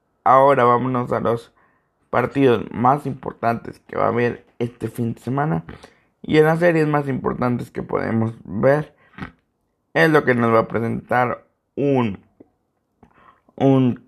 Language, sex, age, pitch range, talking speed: Spanish, male, 50-69, 115-140 Hz, 140 wpm